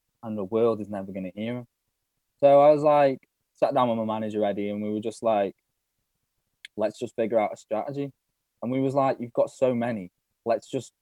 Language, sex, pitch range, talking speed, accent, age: English, male, 100-120 Hz, 220 wpm, British, 10-29